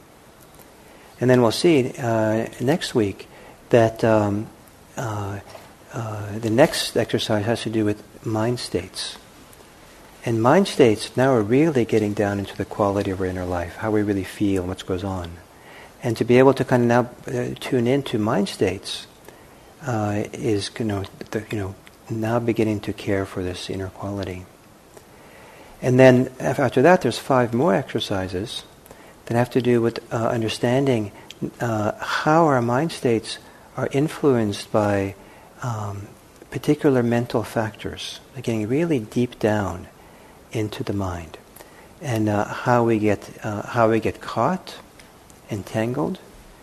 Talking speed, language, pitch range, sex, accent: 150 wpm, English, 100-120 Hz, male, American